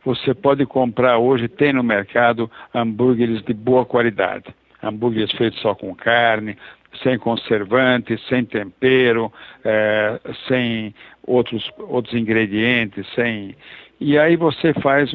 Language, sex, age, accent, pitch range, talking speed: Portuguese, male, 60-79, Brazilian, 115-135 Hz, 120 wpm